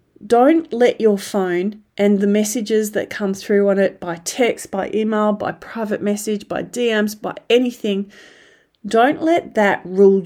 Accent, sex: Australian, female